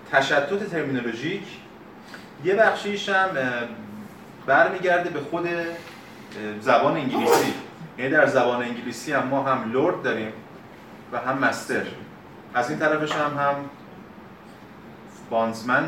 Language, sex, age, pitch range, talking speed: Persian, male, 30-49, 115-155 Hz, 105 wpm